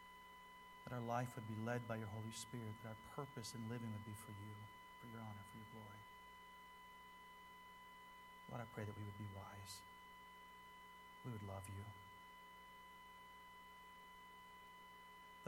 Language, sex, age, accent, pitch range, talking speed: English, male, 40-59, American, 120-200 Hz, 145 wpm